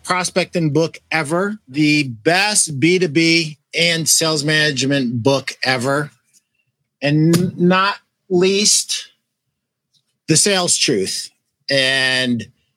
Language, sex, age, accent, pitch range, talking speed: English, male, 50-69, American, 145-180 Hz, 85 wpm